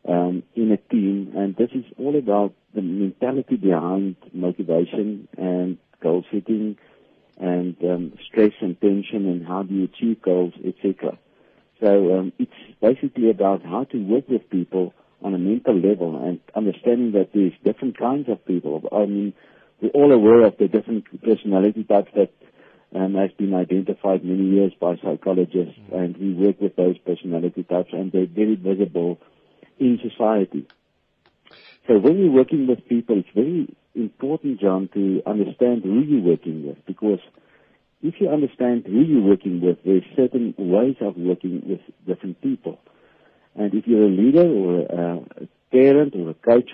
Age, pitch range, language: 50-69, 90-115 Hz, English